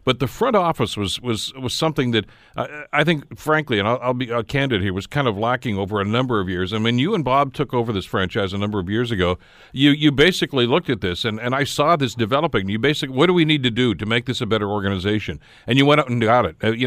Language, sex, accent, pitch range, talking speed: English, male, American, 105-140 Hz, 275 wpm